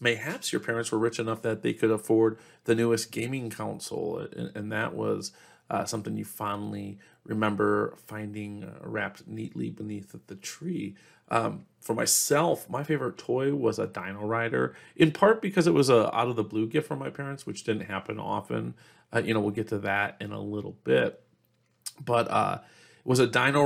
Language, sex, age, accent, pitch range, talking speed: English, male, 30-49, American, 110-130 Hz, 190 wpm